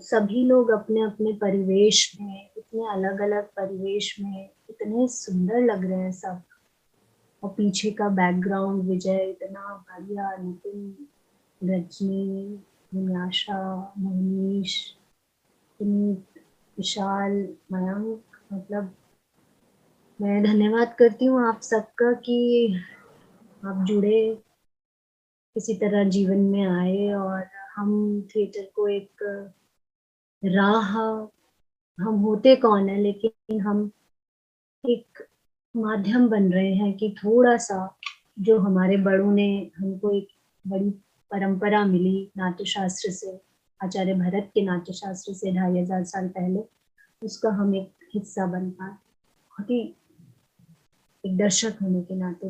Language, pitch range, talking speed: Hindi, 190-215 Hz, 110 wpm